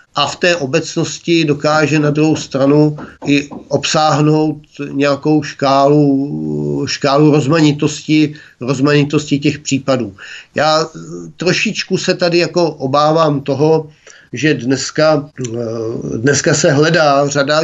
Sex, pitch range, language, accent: male, 140-165 Hz, Czech, native